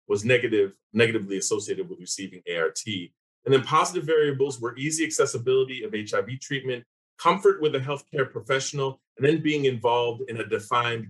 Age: 30-49